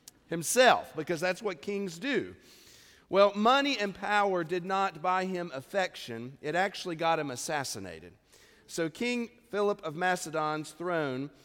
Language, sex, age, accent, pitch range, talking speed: English, male, 40-59, American, 155-200 Hz, 135 wpm